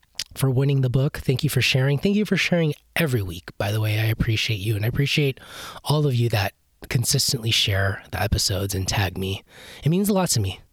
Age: 20-39